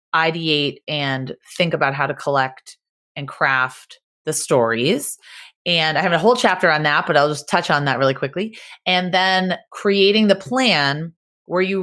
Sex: female